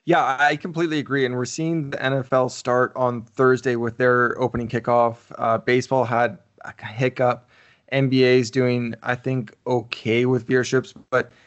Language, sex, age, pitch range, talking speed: English, male, 20-39, 120-140 Hz, 150 wpm